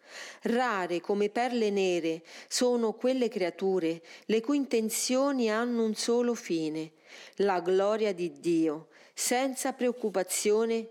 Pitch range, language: 175-230 Hz, Italian